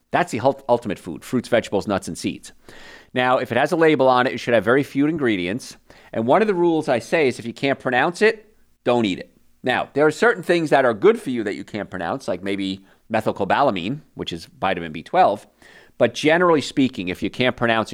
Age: 40-59